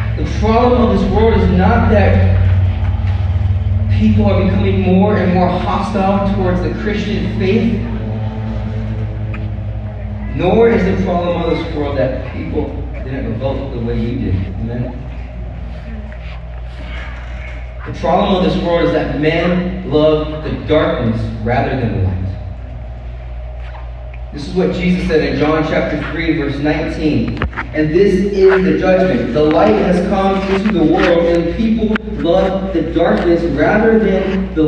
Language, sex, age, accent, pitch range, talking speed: English, male, 30-49, American, 100-155 Hz, 140 wpm